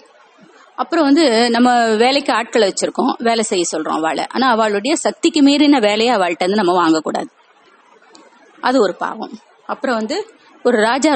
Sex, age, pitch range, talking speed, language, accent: female, 30-49, 220-285 Hz, 75 wpm, Tamil, native